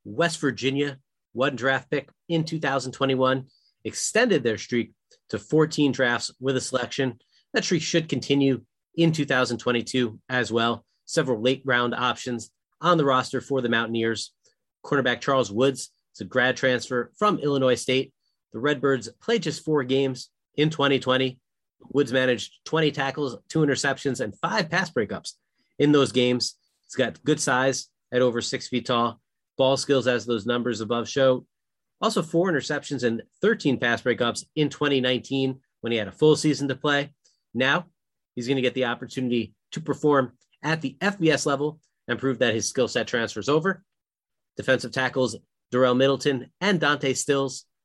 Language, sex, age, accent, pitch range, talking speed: English, male, 30-49, American, 125-145 Hz, 160 wpm